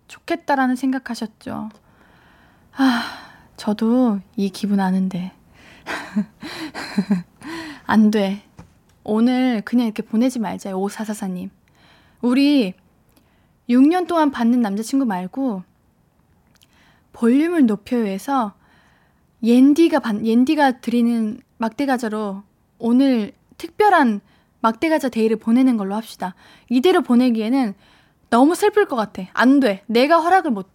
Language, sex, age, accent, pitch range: Korean, female, 20-39, native, 225-300 Hz